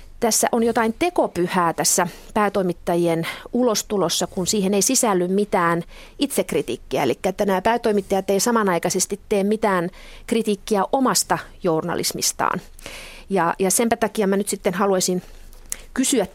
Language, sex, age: Finnish, female, 30-49